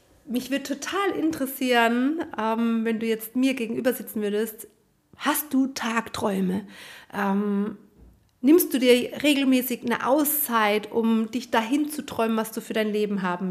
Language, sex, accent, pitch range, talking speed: German, female, German, 210-255 Hz, 140 wpm